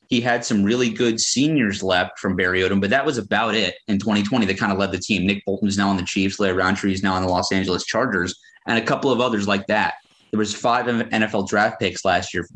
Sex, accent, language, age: male, American, English, 30-49